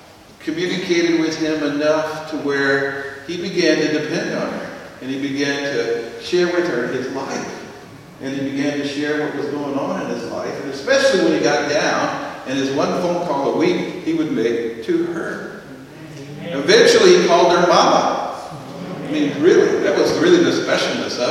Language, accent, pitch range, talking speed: English, American, 140-185 Hz, 185 wpm